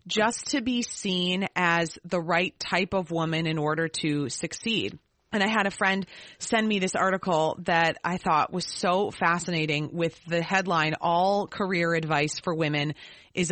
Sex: female